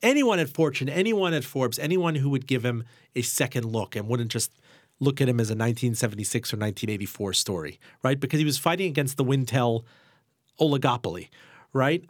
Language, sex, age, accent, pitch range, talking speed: English, male, 40-59, American, 120-160 Hz, 180 wpm